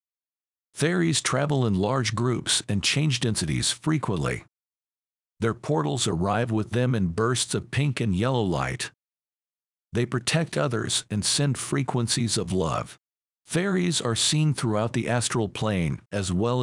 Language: English